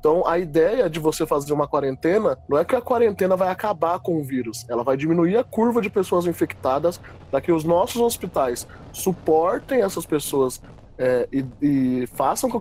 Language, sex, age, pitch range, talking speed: Portuguese, male, 20-39, 140-195 Hz, 180 wpm